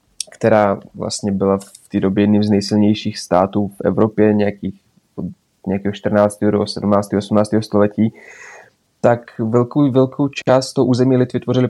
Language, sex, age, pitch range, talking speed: Czech, male, 20-39, 110-125 Hz, 145 wpm